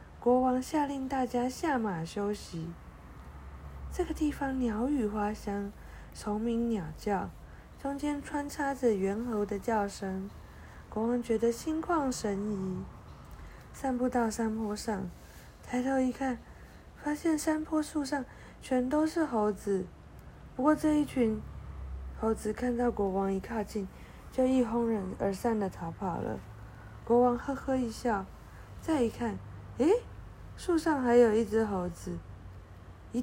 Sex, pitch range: female, 205-275 Hz